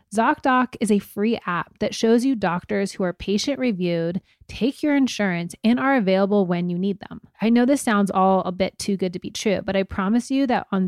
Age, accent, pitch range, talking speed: 20-39, American, 185-230 Hz, 225 wpm